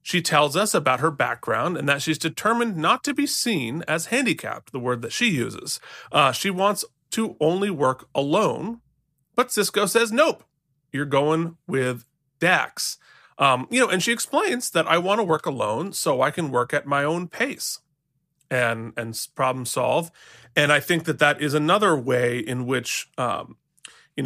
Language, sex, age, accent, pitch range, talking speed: English, male, 30-49, American, 130-180 Hz, 180 wpm